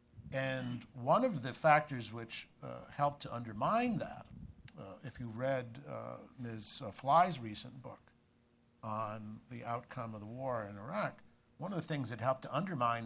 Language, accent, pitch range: English, American, 115-140 Hz